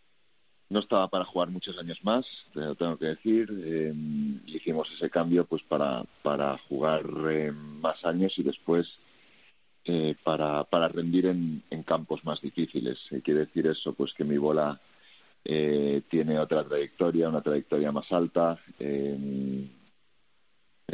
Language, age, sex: Spanish, 50-69, male